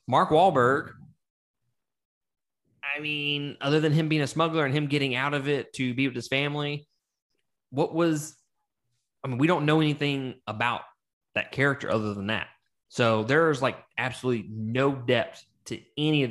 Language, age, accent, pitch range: English, 20-39, American, 105-135 Hz